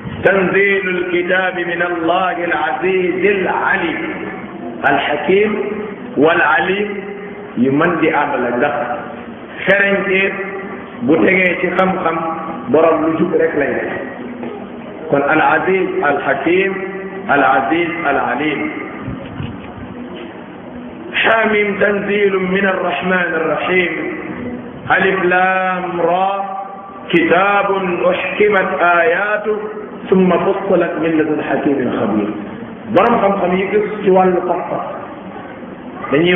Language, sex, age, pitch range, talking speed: French, male, 50-69, 160-200 Hz, 75 wpm